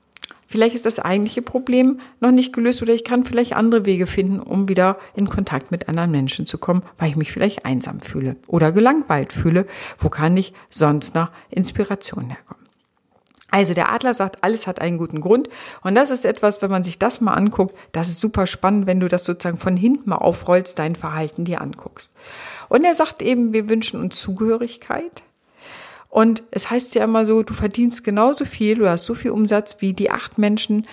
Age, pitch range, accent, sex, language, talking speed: 50-69, 180-230 Hz, German, female, German, 200 wpm